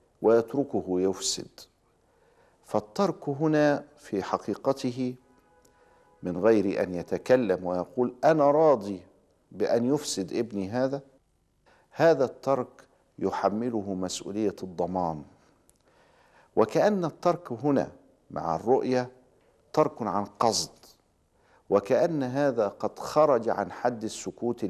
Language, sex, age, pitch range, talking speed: Arabic, male, 50-69, 90-125 Hz, 90 wpm